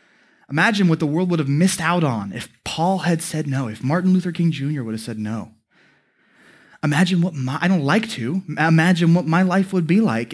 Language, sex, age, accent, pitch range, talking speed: English, male, 20-39, American, 160-215 Hz, 215 wpm